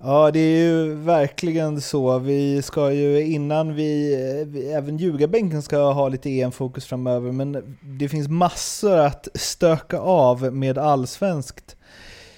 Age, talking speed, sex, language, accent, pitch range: 30-49, 140 wpm, male, Swedish, native, 130-160 Hz